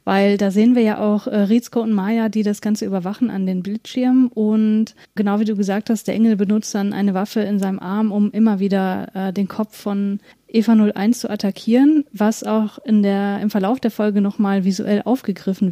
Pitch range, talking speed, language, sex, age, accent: 205-230 Hz, 200 wpm, German, female, 30-49, German